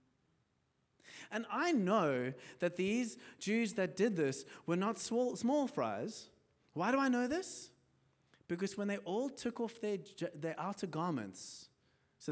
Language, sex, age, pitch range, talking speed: English, male, 30-49, 130-205 Hz, 140 wpm